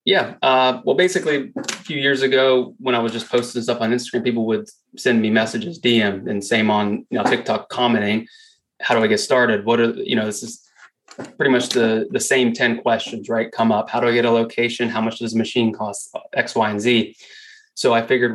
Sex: male